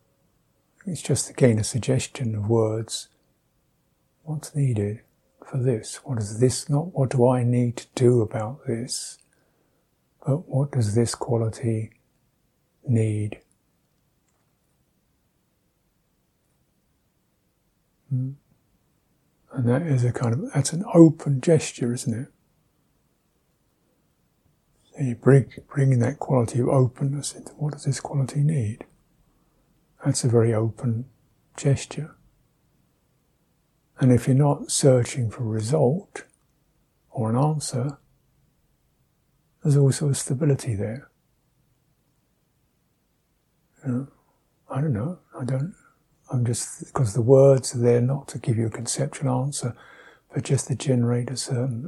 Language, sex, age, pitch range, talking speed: English, male, 60-79, 120-140 Hz, 120 wpm